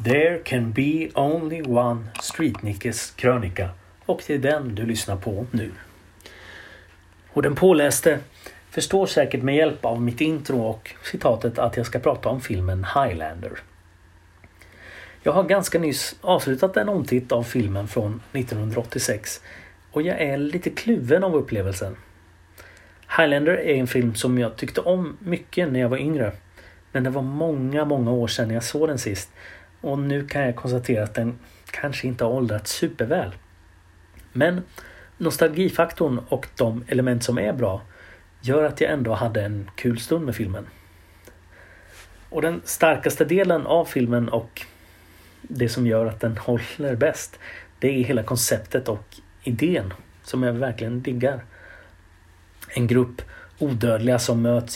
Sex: male